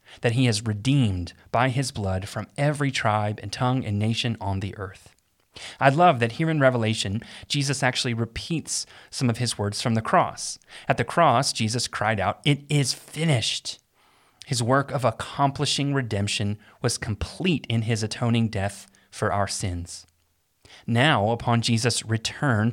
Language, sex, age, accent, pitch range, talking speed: English, male, 30-49, American, 105-130 Hz, 160 wpm